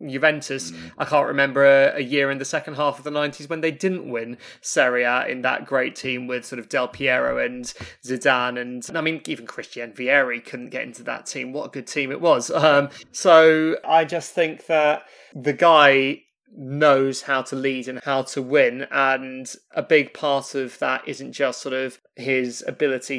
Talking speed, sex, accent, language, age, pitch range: 195 wpm, male, British, English, 20-39, 130-145 Hz